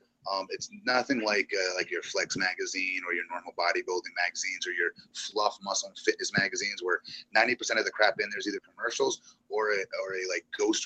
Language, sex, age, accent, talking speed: English, male, 30-49, American, 200 wpm